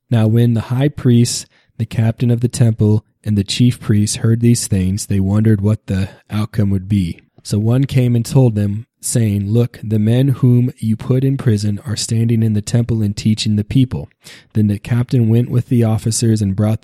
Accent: American